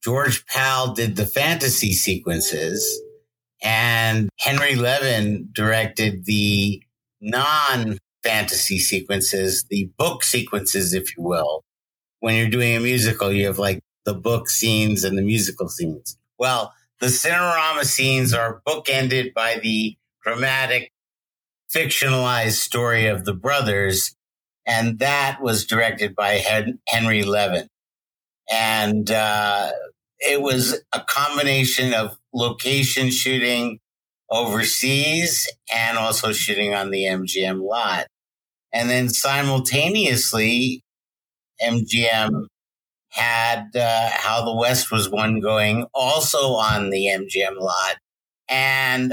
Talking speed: 110 wpm